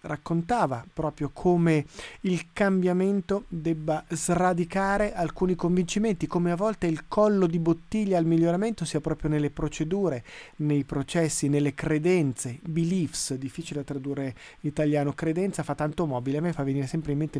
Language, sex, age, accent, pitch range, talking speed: Italian, male, 30-49, native, 145-175 Hz, 150 wpm